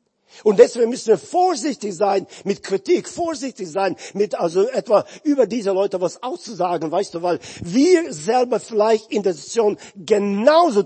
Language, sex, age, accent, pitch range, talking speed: German, male, 50-69, German, 180-270 Hz, 155 wpm